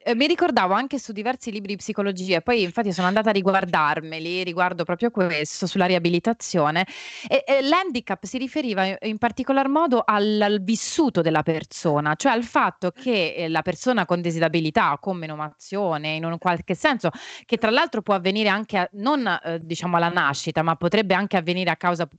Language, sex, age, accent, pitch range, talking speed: Italian, female, 30-49, native, 165-225 Hz, 175 wpm